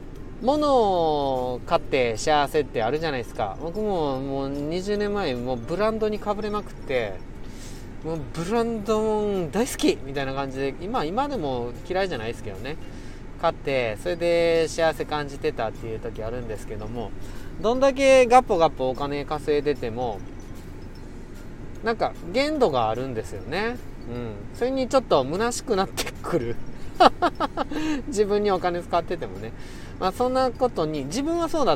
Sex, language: male, Japanese